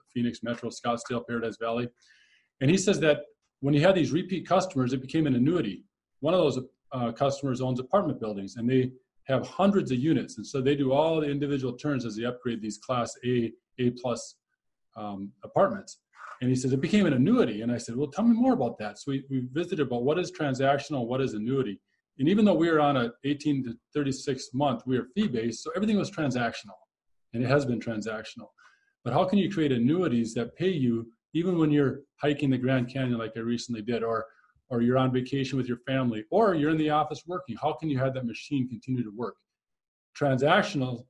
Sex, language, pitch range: male, English, 120-145 Hz